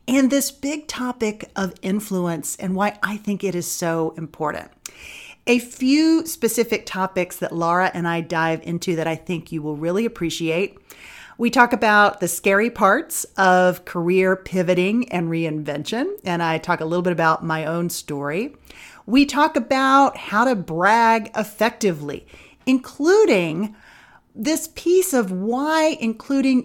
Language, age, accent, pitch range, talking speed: English, 40-59, American, 170-225 Hz, 145 wpm